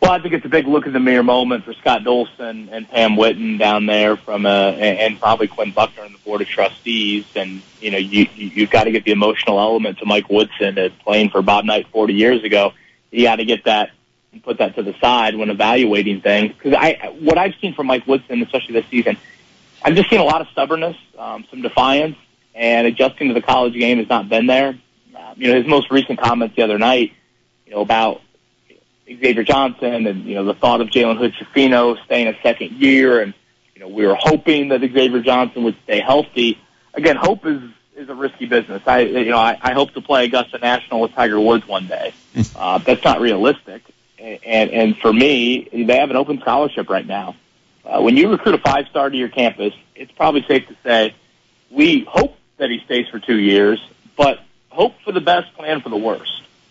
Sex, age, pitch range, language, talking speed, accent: male, 30-49, 105-130 Hz, English, 215 wpm, American